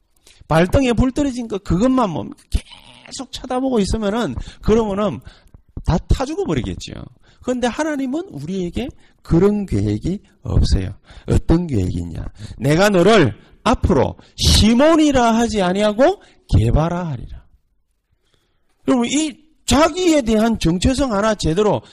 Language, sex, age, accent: Korean, male, 40-59, native